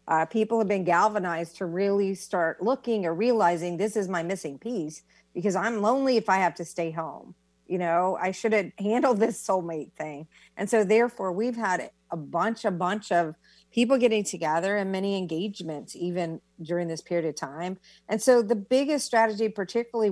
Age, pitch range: 50-69, 175-225 Hz